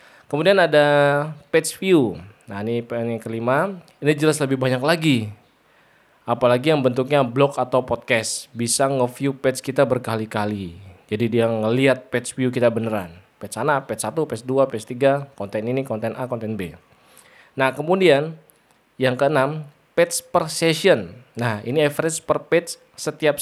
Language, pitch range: Indonesian, 120-150 Hz